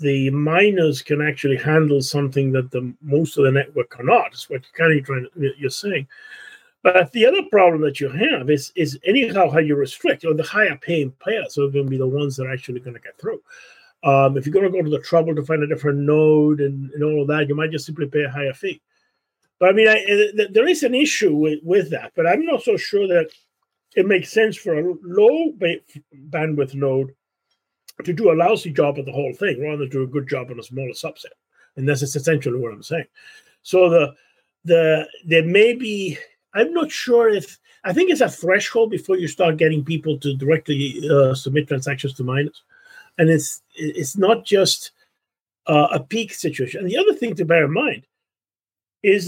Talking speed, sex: 205 wpm, male